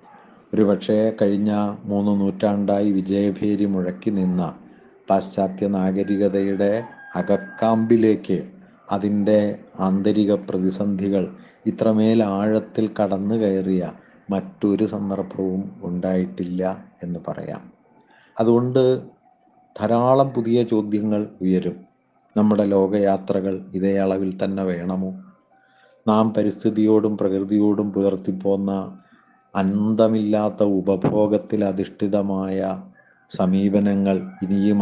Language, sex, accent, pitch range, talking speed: Malayalam, male, native, 95-105 Hz, 75 wpm